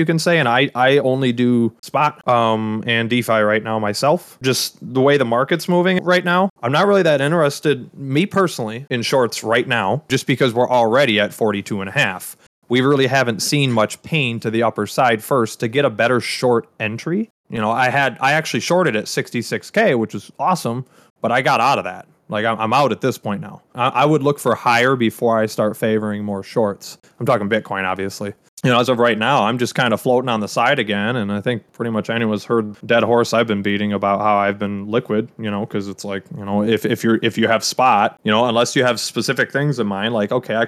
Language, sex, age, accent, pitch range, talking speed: English, male, 20-39, American, 110-135 Hz, 235 wpm